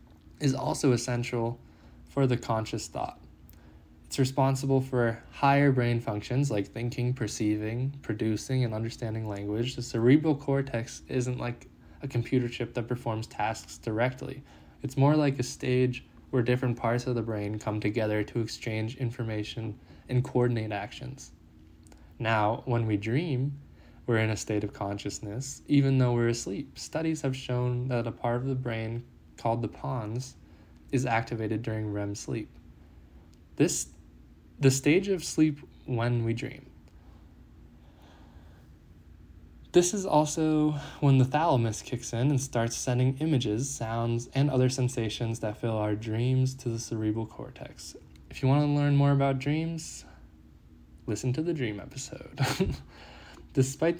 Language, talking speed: English, 140 wpm